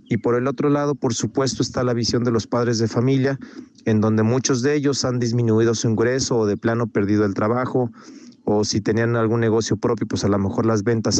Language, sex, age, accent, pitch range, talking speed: Spanish, male, 40-59, Mexican, 115-130 Hz, 225 wpm